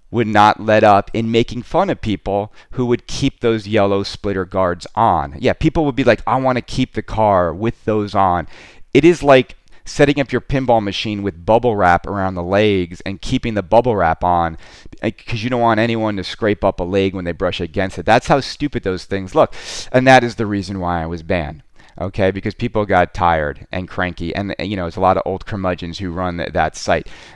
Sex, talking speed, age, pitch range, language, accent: male, 220 wpm, 30-49, 90-115 Hz, English, American